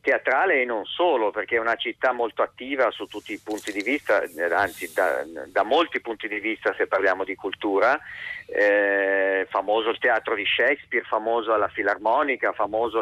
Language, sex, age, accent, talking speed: Italian, male, 40-59, native, 170 wpm